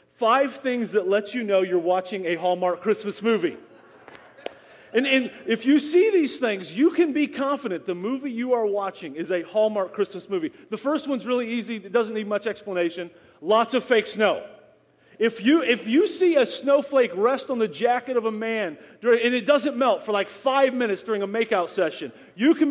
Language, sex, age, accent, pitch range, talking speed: English, male, 40-59, American, 200-275 Hz, 200 wpm